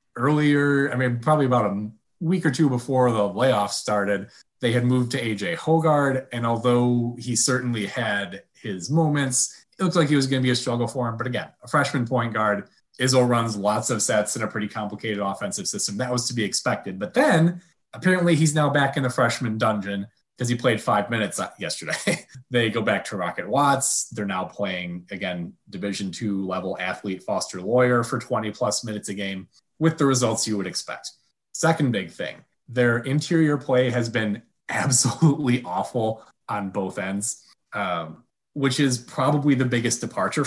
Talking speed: 185 wpm